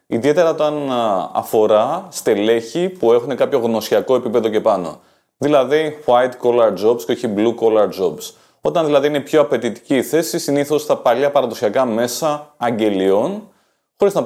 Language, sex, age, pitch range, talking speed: Greek, male, 30-49, 120-180 Hz, 145 wpm